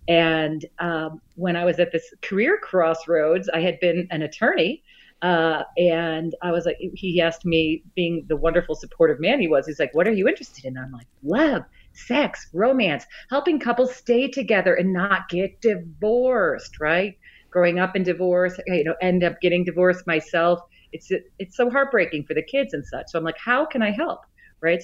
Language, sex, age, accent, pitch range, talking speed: English, female, 40-59, American, 160-195 Hz, 190 wpm